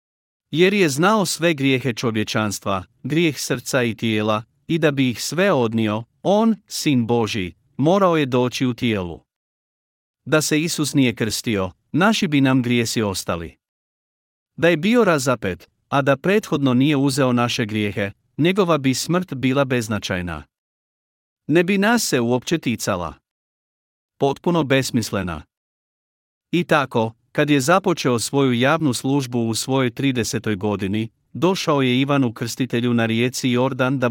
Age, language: 50-69, Croatian